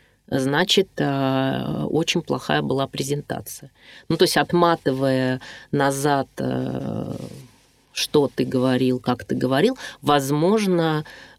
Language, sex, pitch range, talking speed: Russian, female, 130-150 Hz, 90 wpm